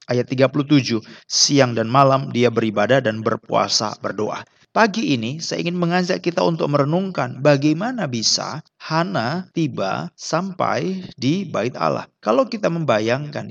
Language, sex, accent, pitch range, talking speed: Indonesian, male, native, 125-175 Hz, 130 wpm